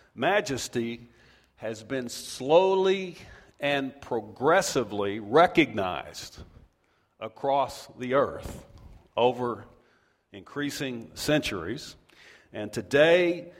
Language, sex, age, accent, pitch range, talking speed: English, male, 50-69, American, 120-170 Hz, 65 wpm